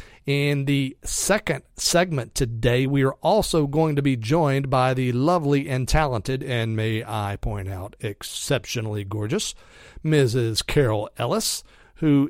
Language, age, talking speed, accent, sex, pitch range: English, 40-59, 135 wpm, American, male, 125-165 Hz